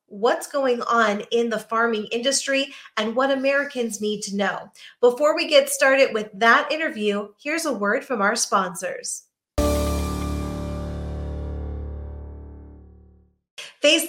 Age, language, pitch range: 30-49, English, 215-275 Hz